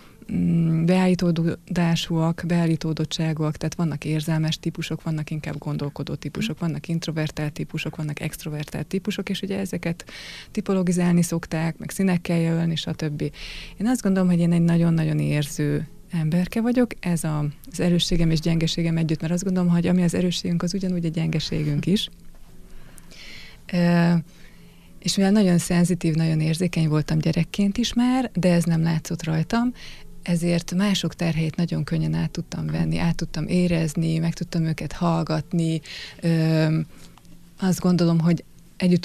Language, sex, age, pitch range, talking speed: Hungarian, female, 20-39, 160-180 Hz, 135 wpm